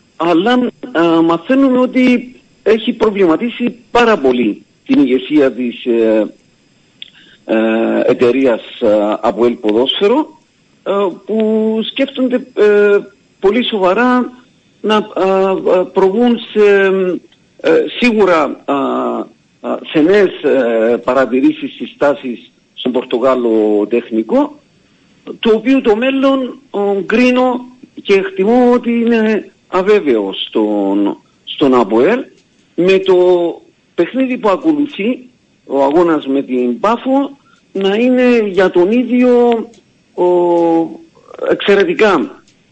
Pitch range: 170-245 Hz